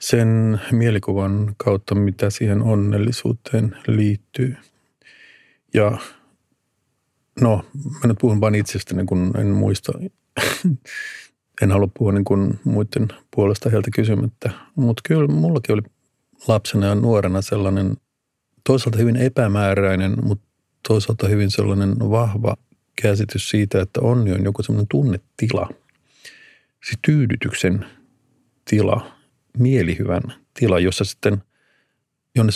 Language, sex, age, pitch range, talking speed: Finnish, male, 50-69, 100-125 Hz, 110 wpm